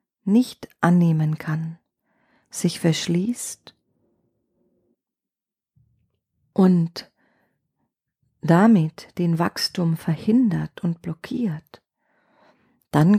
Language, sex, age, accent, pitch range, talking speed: German, female, 40-59, German, 165-205 Hz, 60 wpm